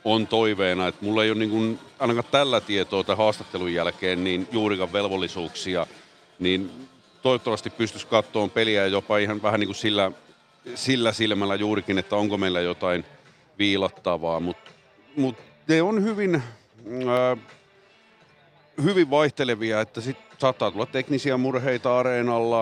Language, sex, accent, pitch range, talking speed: Finnish, male, native, 100-125 Hz, 135 wpm